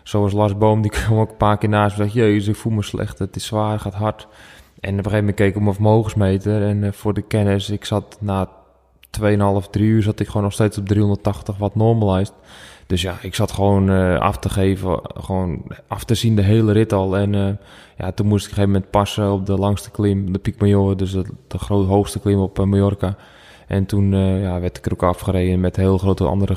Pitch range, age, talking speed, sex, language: 95-110 Hz, 20-39, 240 wpm, male, Dutch